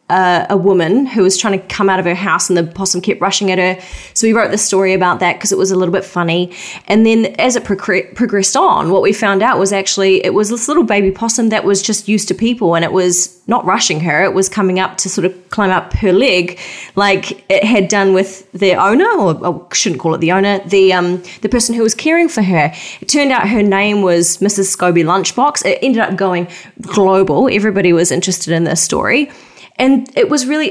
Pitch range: 185-230 Hz